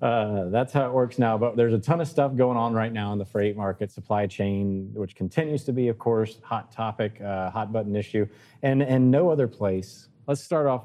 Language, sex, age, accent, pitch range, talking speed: English, male, 30-49, American, 110-130 Hz, 230 wpm